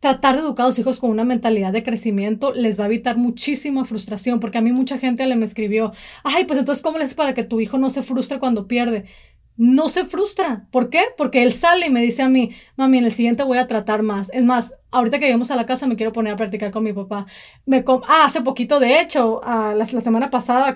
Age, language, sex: 30-49, Spanish, female